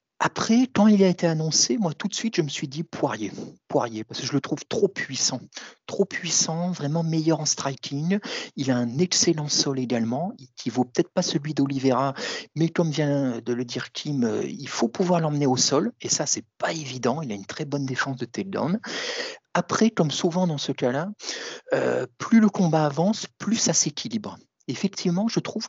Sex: male